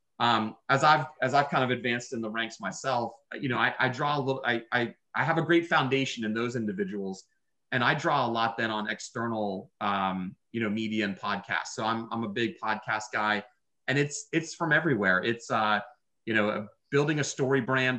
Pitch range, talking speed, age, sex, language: 110-135 Hz, 210 wpm, 30-49, male, English